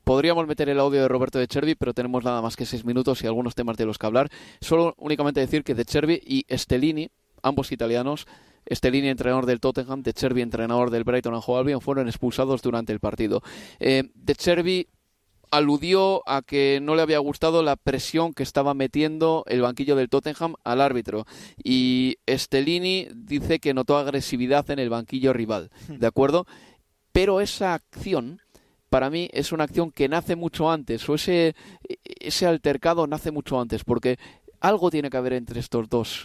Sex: male